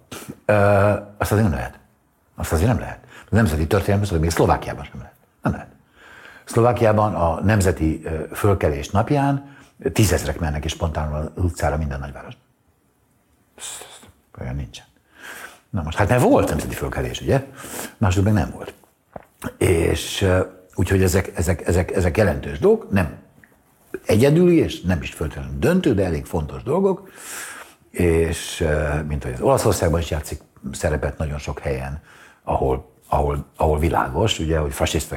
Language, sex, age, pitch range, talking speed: Hungarian, male, 60-79, 75-100 Hz, 140 wpm